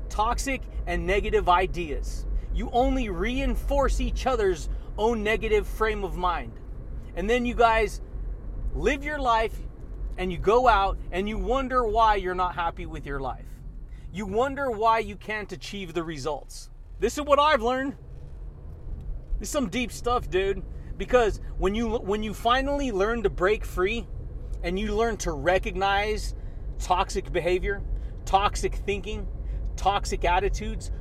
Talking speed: 145 wpm